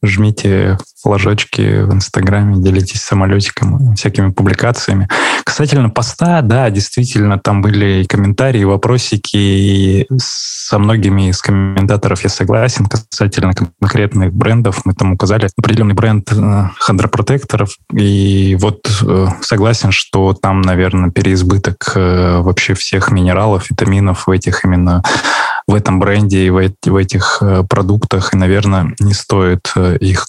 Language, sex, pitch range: Russian, male, 95-110 Hz